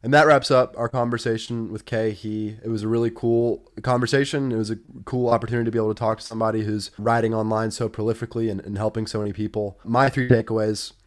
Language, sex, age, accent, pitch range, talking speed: English, male, 20-39, American, 110-120 Hz, 220 wpm